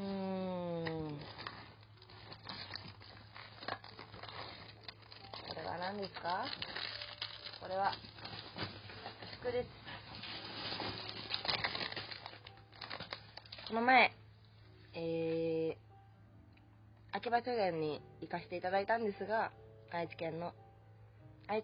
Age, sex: 20-39, female